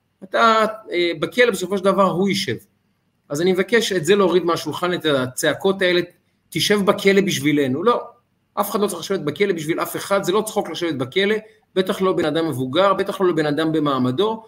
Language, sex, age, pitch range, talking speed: Hebrew, male, 30-49, 170-225 Hz, 185 wpm